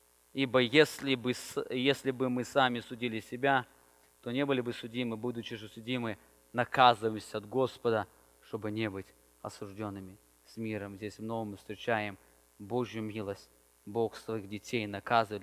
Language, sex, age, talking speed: English, male, 20-39, 145 wpm